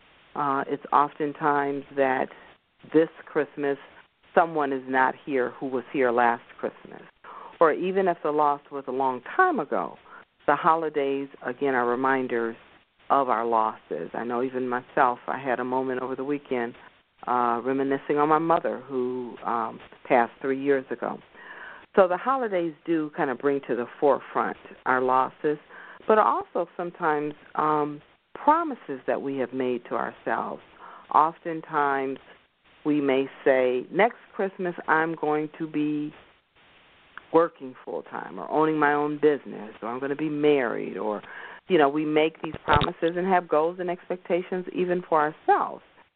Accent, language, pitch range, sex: American, English, 130-155 Hz, female